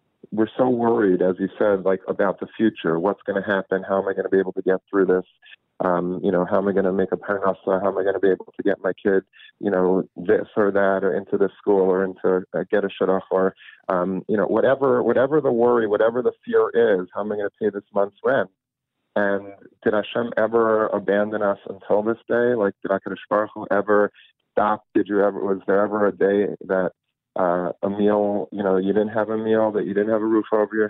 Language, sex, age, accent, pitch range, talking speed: English, male, 40-59, American, 95-110 Hz, 245 wpm